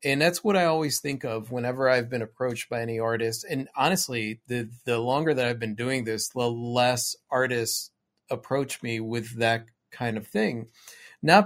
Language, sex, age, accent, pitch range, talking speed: English, male, 30-49, American, 130-180 Hz, 185 wpm